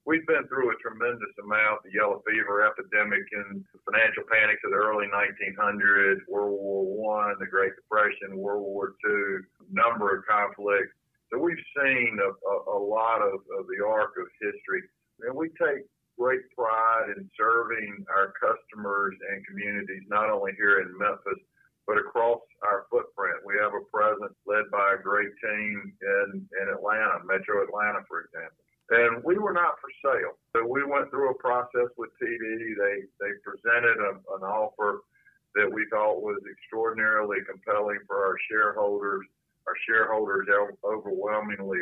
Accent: American